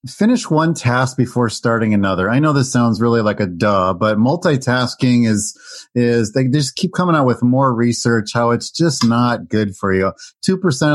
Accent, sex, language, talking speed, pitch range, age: American, male, English, 185 wpm, 120-150 Hz, 30-49